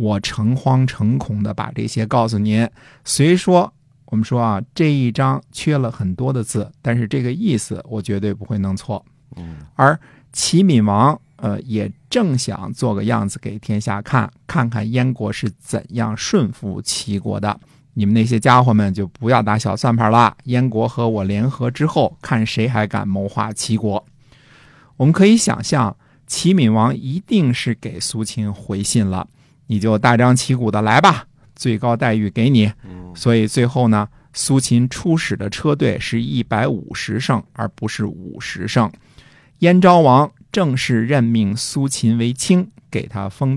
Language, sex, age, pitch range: Chinese, male, 50-69, 105-135 Hz